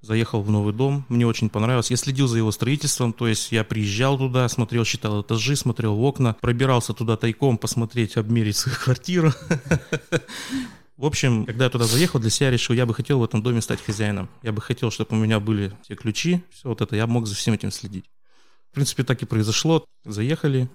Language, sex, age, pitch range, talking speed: Russian, male, 30-49, 115-130 Hz, 205 wpm